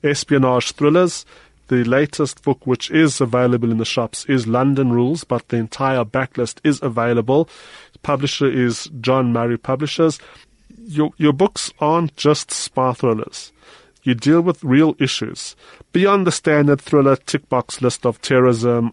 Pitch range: 120-150 Hz